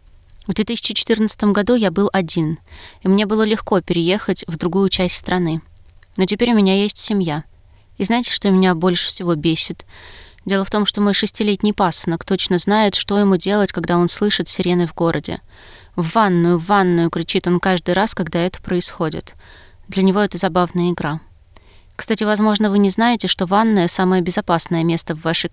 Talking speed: 175 wpm